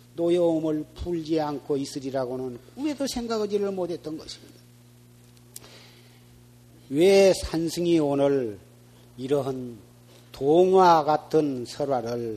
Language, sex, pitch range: Korean, male, 120-160 Hz